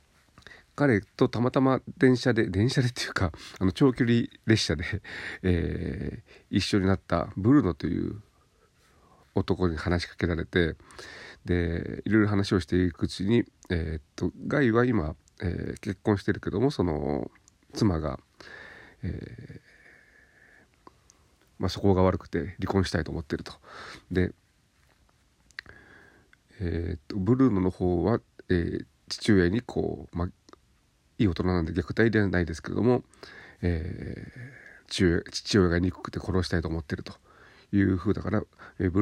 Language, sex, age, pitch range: Japanese, male, 40-59, 85-110 Hz